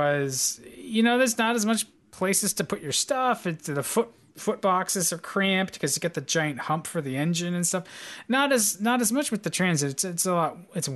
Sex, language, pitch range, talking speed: male, English, 145-180 Hz, 235 wpm